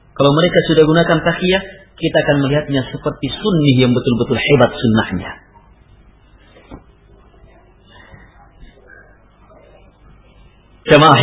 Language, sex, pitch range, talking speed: Malay, male, 110-145 Hz, 80 wpm